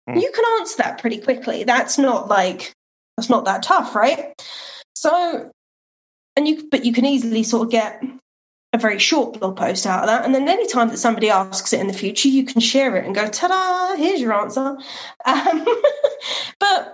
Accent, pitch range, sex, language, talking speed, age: British, 210-270 Hz, female, English, 195 wpm, 20-39